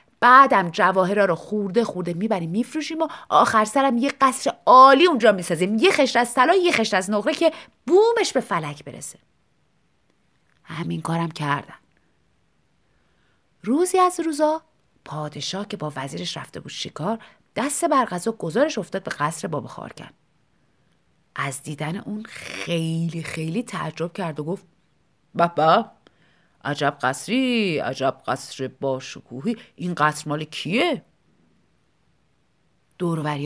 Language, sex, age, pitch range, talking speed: Persian, female, 30-49, 160-260 Hz, 125 wpm